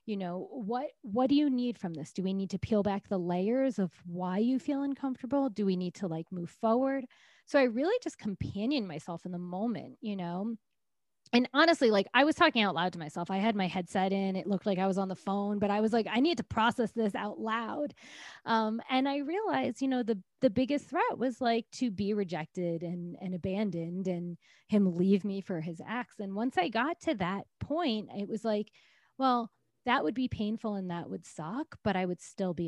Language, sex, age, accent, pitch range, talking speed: English, female, 20-39, American, 195-255 Hz, 225 wpm